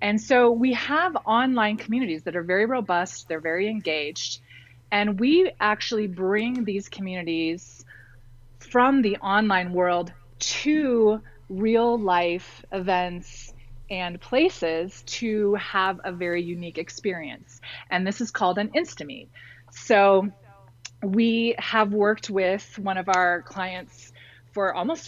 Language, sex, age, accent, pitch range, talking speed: English, female, 30-49, American, 165-210 Hz, 125 wpm